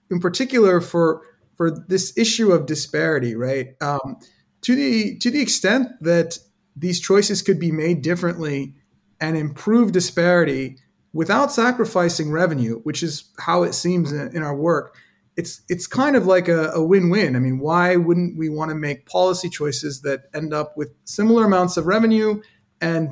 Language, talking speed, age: English, 165 wpm, 30-49